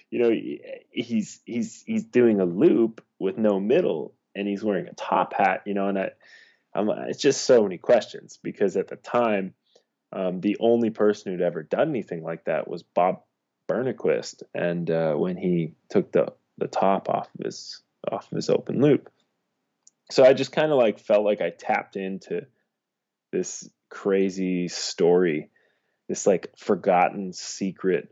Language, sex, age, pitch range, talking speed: English, male, 20-39, 90-110 Hz, 165 wpm